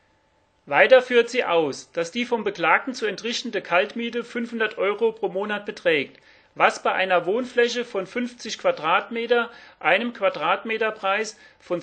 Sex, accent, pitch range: male, German, 190-235 Hz